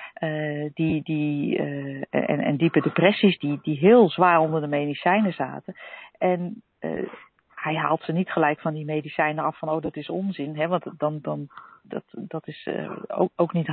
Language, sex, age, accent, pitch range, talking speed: Dutch, female, 40-59, Dutch, 155-190 Hz, 190 wpm